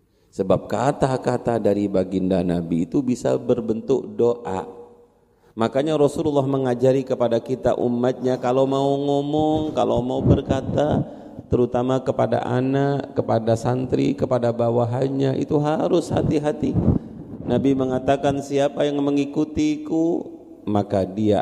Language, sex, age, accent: Indonesian, male, 40-59, native